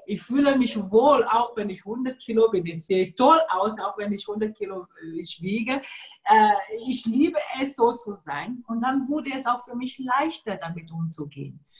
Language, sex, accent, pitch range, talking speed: German, female, German, 195-265 Hz, 185 wpm